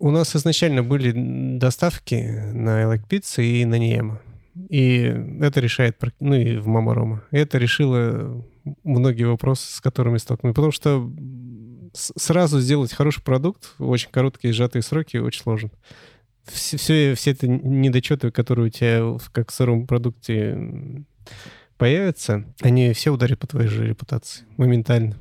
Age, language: 30-49, Russian